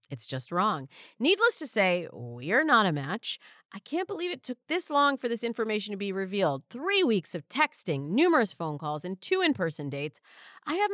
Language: English